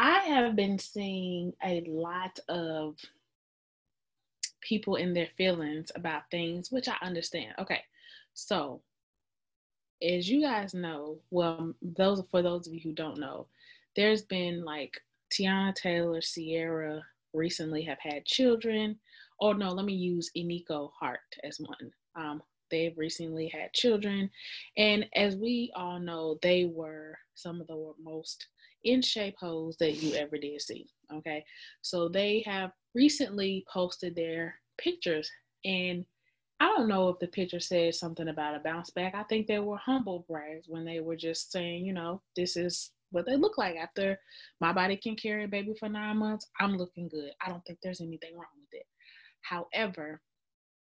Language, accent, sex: English, American, female